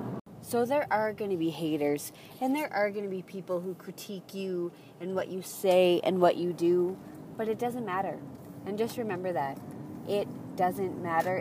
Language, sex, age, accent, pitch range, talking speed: English, female, 20-39, American, 170-200 Hz, 190 wpm